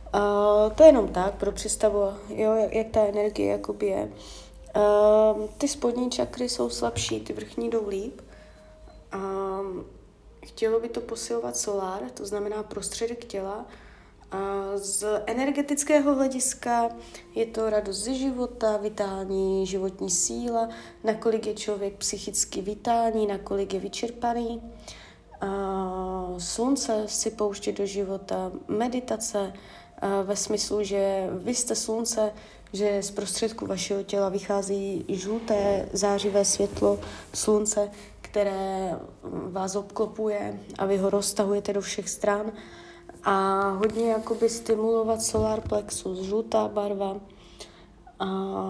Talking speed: 115 wpm